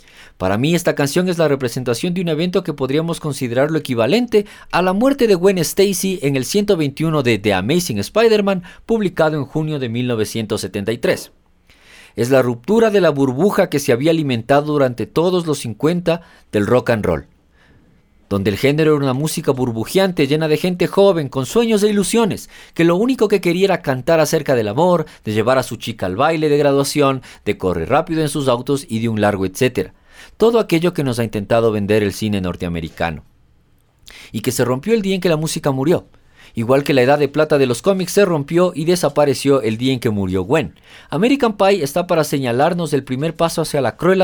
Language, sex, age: Spanish, male, 50-69